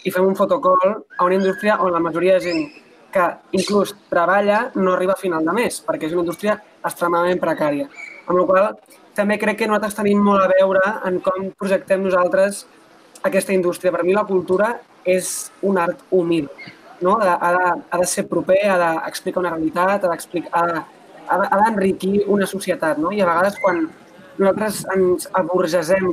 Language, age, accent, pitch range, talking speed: Spanish, 20-39, Spanish, 180-200 Hz, 180 wpm